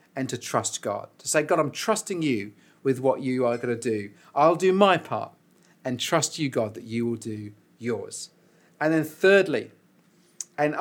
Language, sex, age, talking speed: English, male, 40-59, 190 wpm